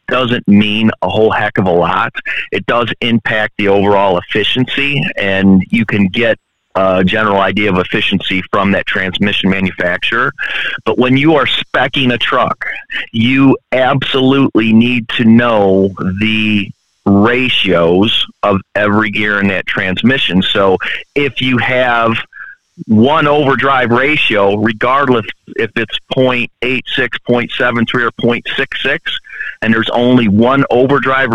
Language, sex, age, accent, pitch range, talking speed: English, male, 40-59, American, 100-125 Hz, 135 wpm